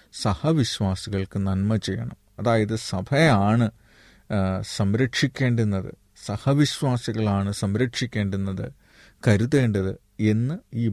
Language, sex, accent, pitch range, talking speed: Malayalam, male, native, 100-120 Hz, 60 wpm